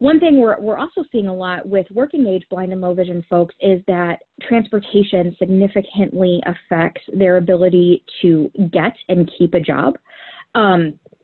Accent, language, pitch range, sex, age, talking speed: American, English, 180-225 Hz, female, 20-39, 160 wpm